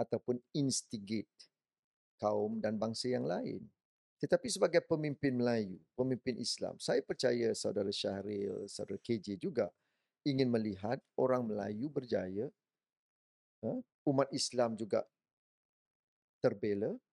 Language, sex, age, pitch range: Malay, male, 40-59, 110-155 Hz